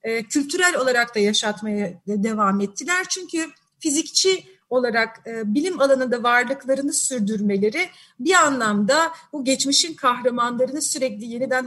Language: Turkish